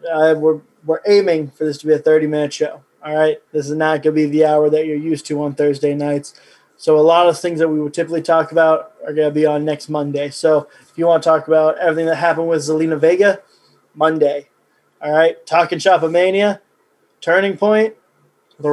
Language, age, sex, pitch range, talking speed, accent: English, 20-39, male, 155-200 Hz, 225 wpm, American